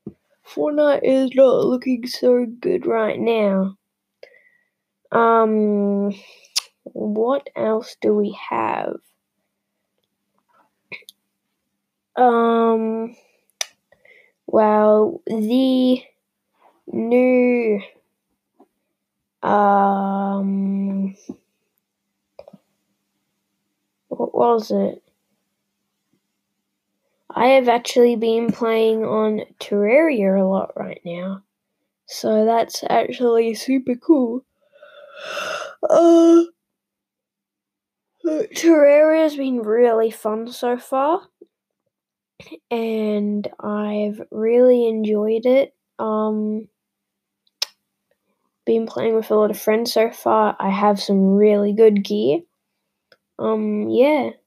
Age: 10-29